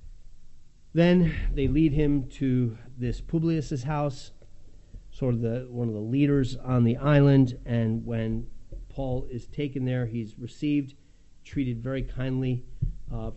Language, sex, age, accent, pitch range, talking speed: English, male, 40-59, American, 100-125 Hz, 135 wpm